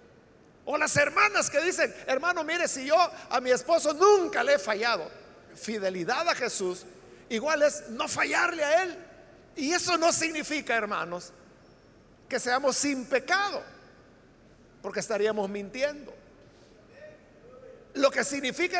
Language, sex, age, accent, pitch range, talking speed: Spanish, male, 50-69, Mexican, 240-315 Hz, 130 wpm